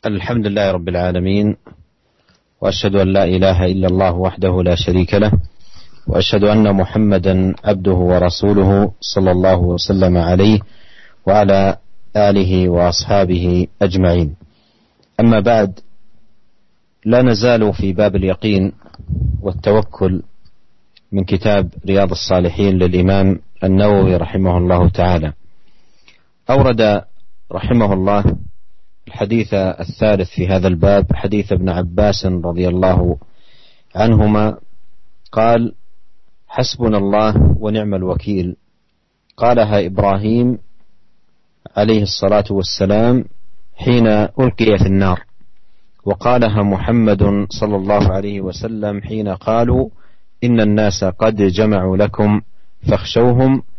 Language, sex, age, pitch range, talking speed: Indonesian, male, 40-59, 95-105 Hz, 95 wpm